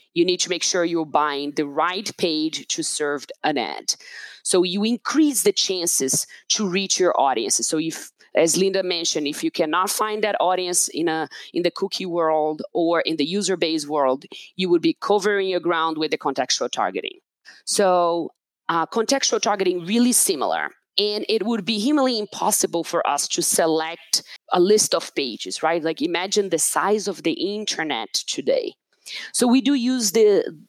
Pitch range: 170-250 Hz